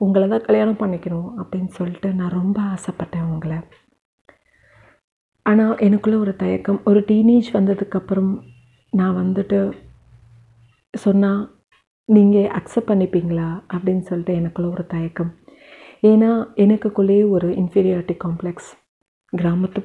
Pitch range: 175-205 Hz